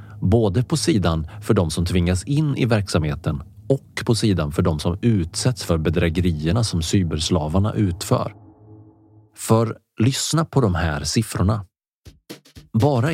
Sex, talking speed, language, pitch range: male, 130 wpm, Swedish, 85-120 Hz